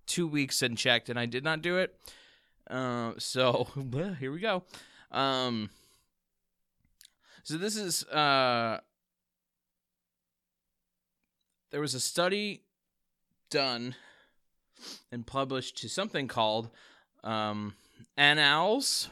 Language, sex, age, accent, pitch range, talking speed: English, male, 20-39, American, 105-135 Hz, 100 wpm